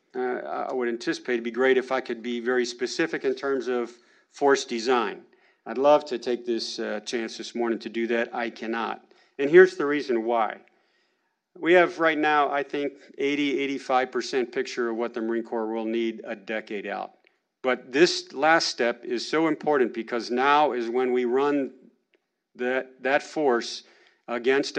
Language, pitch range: English, 115-140 Hz